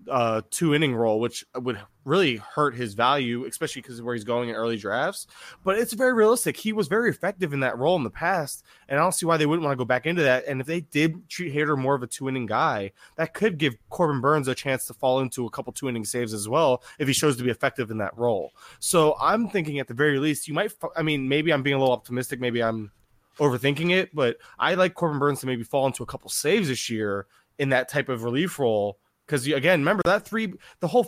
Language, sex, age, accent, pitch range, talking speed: English, male, 20-39, American, 120-165 Hz, 255 wpm